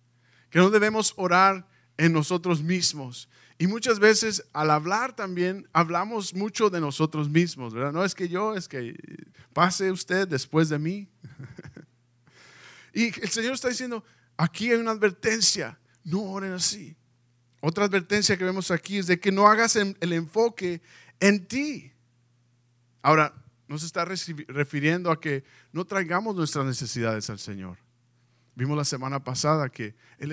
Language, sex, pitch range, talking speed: Spanish, male, 120-190 Hz, 145 wpm